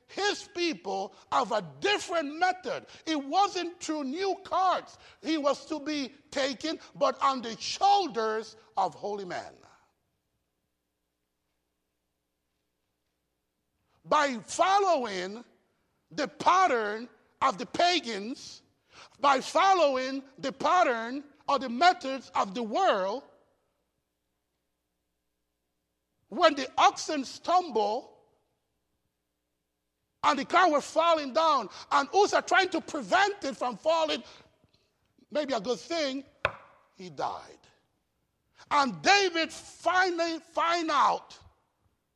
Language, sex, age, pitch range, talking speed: English, male, 60-79, 195-325 Hz, 100 wpm